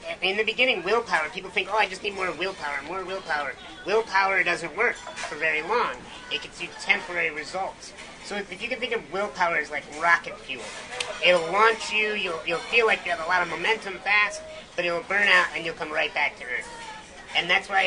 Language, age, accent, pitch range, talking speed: English, 30-49, American, 170-205 Hz, 220 wpm